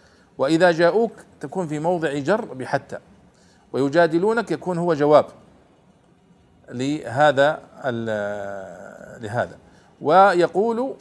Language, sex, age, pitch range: Arabic, male, 50-69, 125-170 Hz